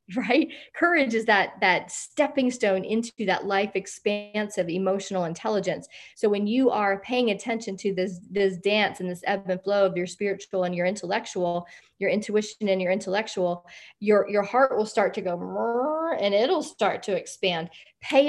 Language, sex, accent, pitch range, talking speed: English, female, American, 190-240 Hz, 170 wpm